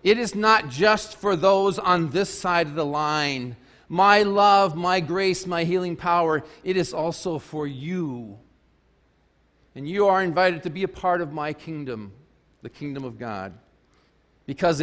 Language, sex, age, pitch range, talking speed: English, male, 40-59, 130-190 Hz, 160 wpm